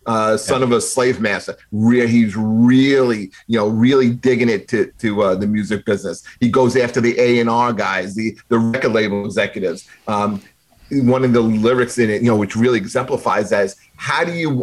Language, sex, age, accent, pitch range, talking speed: English, male, 30-49, American, 110-130 Hz, 195 wpm